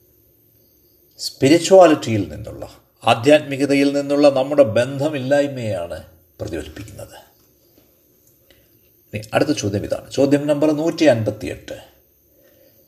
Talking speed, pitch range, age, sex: 65 wpm, 115-170 Hz, 50-69, male